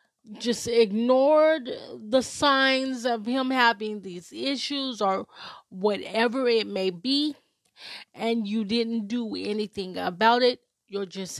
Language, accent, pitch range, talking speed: English, American, 215-260 Hz, 120 wpm